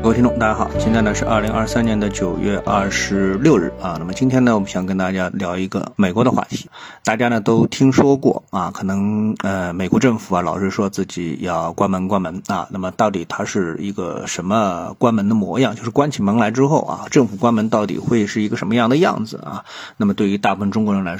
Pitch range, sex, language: 95-130 Hz, male, Chinese